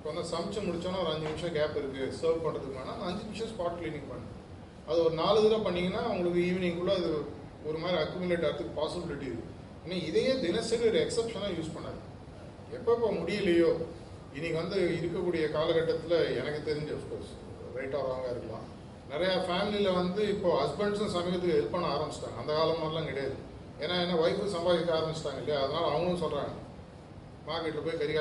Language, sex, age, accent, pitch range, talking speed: Tamil, male, 30-49, native, 150-185 Hz, 160 wpm